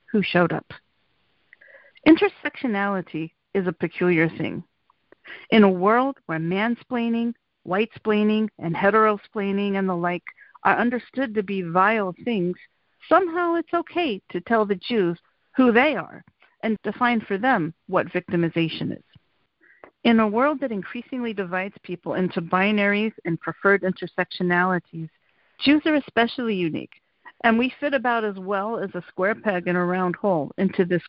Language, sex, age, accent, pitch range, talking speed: English, female, 50-69, American, 180-230 Hz, 145 wpm